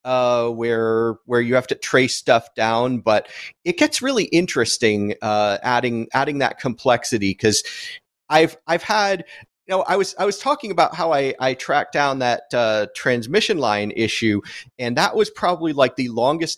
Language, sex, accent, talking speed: English, male, American, 175 wpm